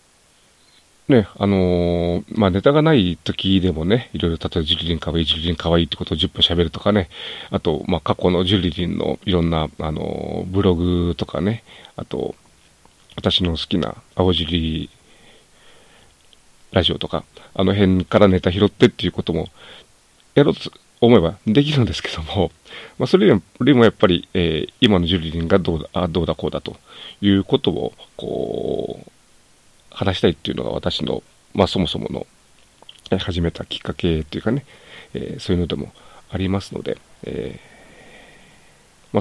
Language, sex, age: Japanese, male, 40-59